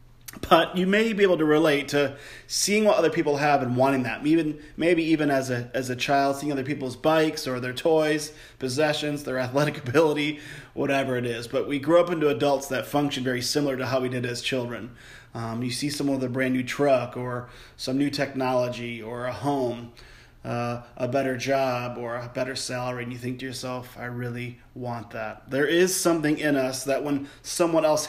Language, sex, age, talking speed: English, male, 30-49, 205 wpm